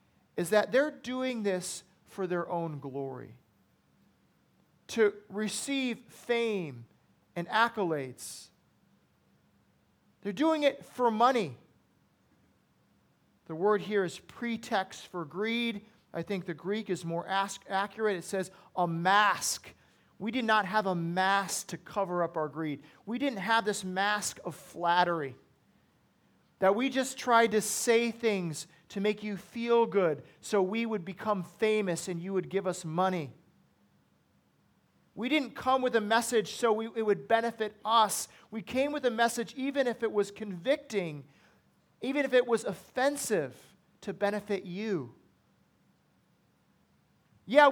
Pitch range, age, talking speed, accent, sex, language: 185-235 Hz, 40-59, 135 wpm, American, male, English